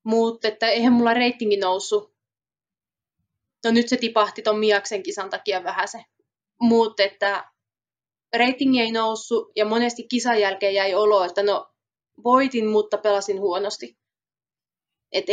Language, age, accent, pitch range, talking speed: Finnish, 20-39, native, 200-230 Hz, 120 wpm